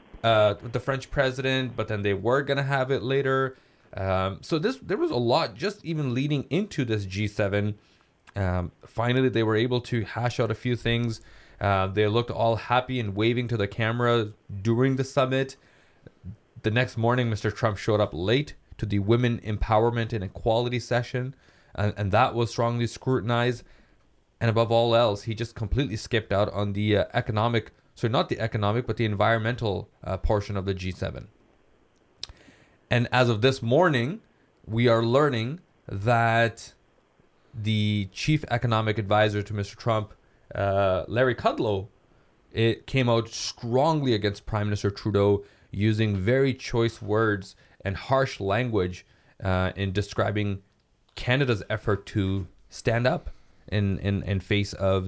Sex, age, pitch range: male, 20-39, 100-125 Hz